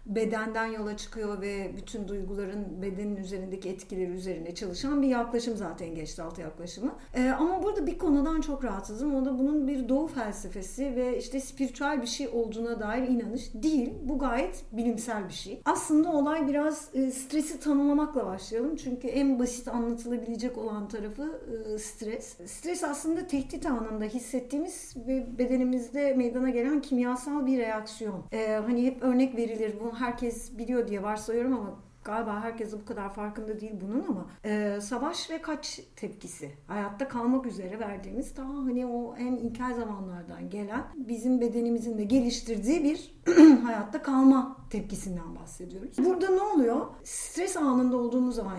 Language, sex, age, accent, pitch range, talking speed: Turkish, female, 50-69, native, 215-270 Hz, 150 wpm